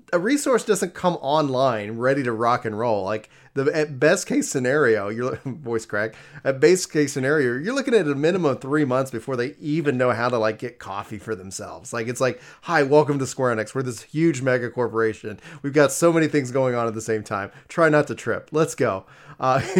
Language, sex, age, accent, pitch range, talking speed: English, male, 30-49, American, 115-150 Hz, 220 wpm